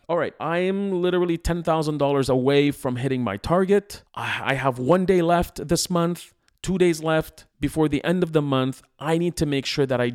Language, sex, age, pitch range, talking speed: English, male, 40-59, 120-155 Hz, 200 wpm